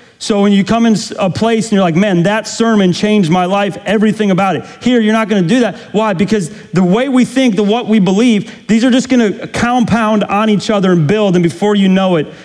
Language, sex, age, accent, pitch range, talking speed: English, male, 40-59, American, 145-210 Hz, 250 wpm